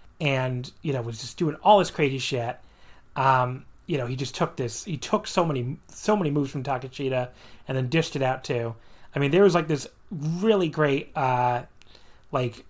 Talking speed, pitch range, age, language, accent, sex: 200 wpm, 130-175 Hz, 30-49, English, American, male